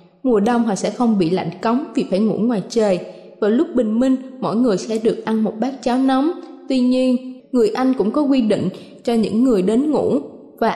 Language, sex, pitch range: Thai, female, 205-260 Hz